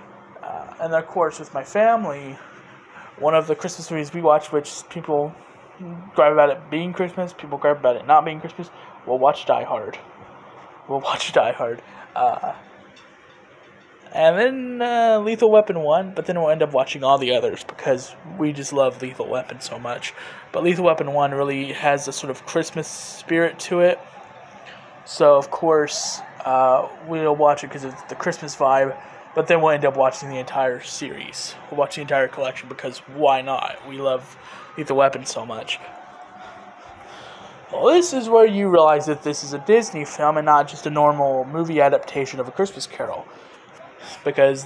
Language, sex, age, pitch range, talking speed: English, male, 20-39, 140-175 Hz, 175 wpm